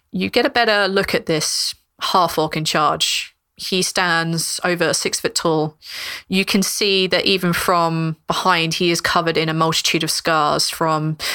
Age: 20-39